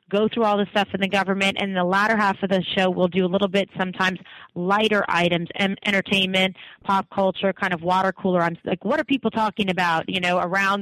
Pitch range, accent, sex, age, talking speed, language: 175-200 Hz, American, female, 30-49, 235 wpm, English